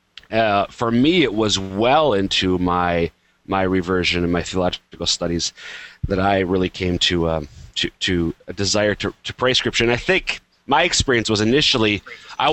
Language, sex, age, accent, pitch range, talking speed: English, male, 30-49, American, 90-110 Hz, 170 wpm